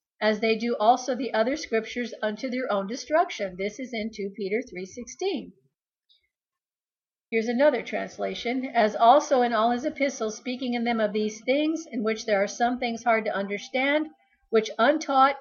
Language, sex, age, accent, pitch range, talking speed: English, female, 50-69, American, 225-280 Hz, 165 wpm